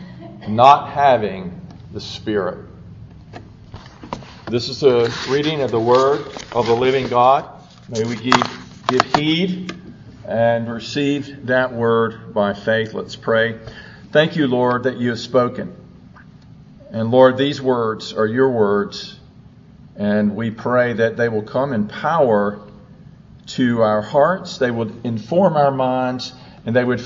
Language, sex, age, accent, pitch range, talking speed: English, male, 50-69, American, 115-150 Hz, 135 wpm